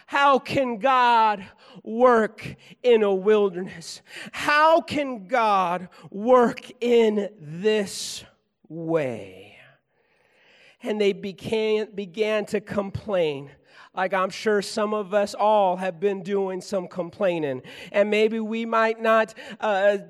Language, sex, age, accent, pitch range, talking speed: English, male, 40-59, American, 215-260 Hz, 110 wpm